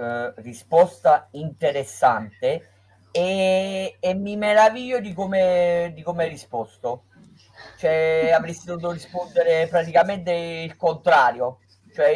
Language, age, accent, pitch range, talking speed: Italian, 30-49, native, 135-180 Hz, 100 wpm